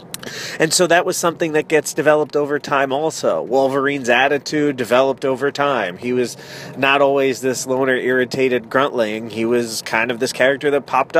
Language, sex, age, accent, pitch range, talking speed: English, male, 30-49, American, 125-155 Hz, 170 wpm